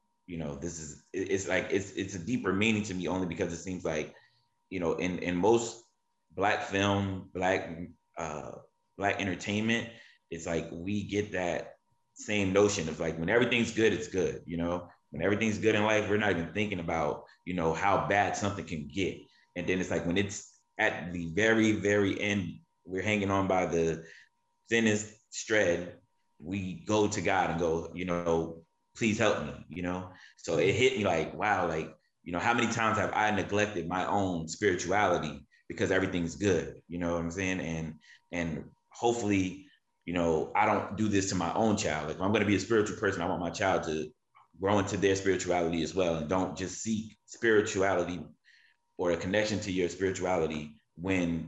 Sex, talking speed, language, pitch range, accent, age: male, 190 wpm, English, 85-100 Hz, American, 20-39